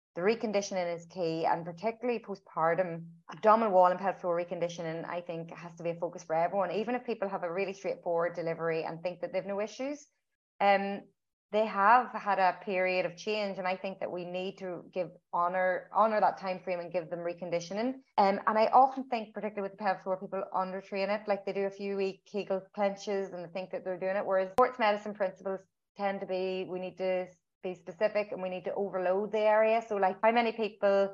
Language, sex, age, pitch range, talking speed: English, female, 30-49, 180-205 Hz, 215 wpm